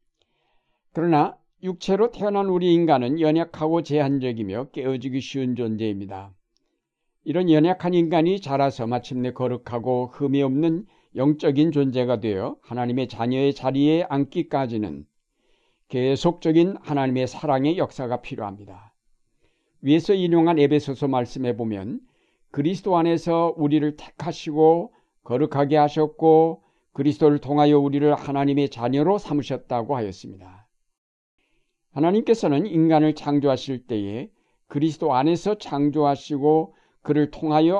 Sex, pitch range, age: male, 125-155 Hz, 60-79